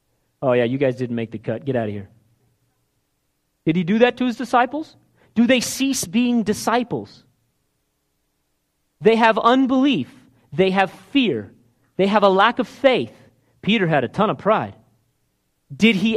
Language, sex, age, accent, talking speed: English, male, 40-59, American, 165 wpm